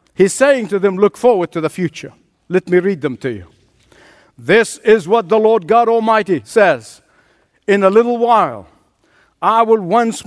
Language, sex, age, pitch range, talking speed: English, male, 60-79, 170-230 Hz, 175 wpm